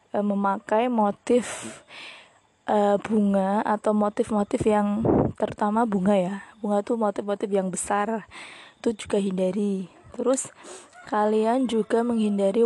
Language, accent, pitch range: Indonesian, native, 200-230 Hz